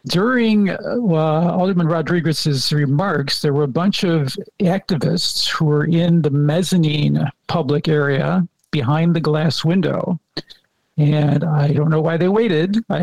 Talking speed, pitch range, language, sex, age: 140 wpm, 150-175 Hz, English, male, 50-69